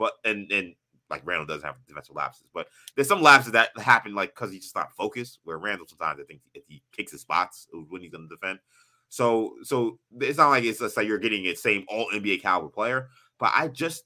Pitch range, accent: 95-130 Hz, American